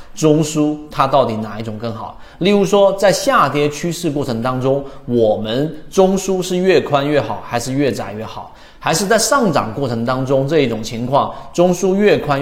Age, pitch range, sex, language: 30-49, 120-185 Hz, male, Chinese